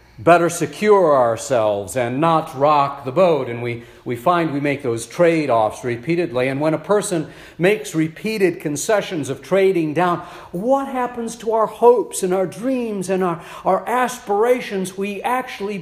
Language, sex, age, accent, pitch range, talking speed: English, male, 50-69, American, 175-245 Hz, 155 wpm